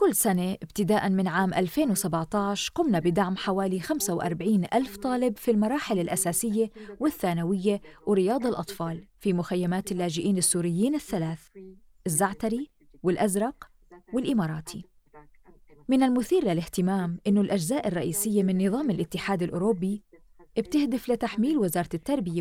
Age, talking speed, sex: 20-39, 105 wpm, female